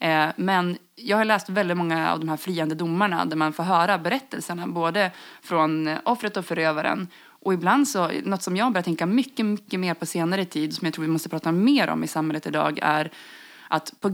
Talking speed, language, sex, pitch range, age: 210 wpm, English, female, 160-210 Hz, 20-39